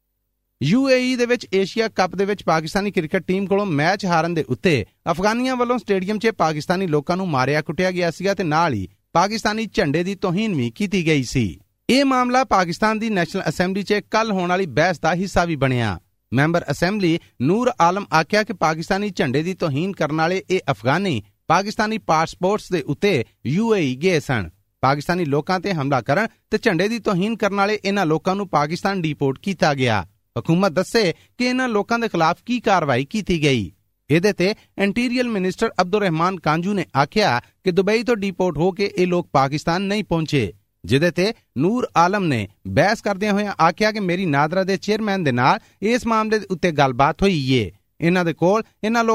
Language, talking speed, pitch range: Punjabi, 135 wpm, 150-205 Hz